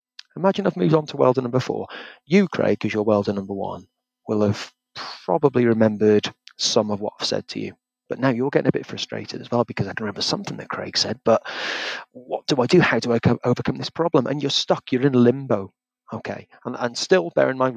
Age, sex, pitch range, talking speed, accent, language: 30-49, male, 110-155 Hz, 235 wpm, British, English